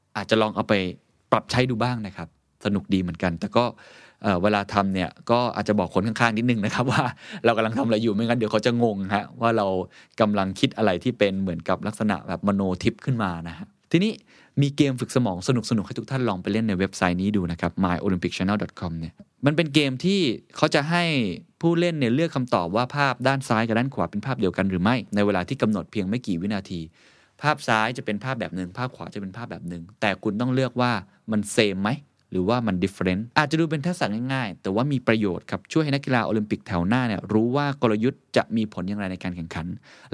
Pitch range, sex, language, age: 95-125 Hz, male, Thai, 20-39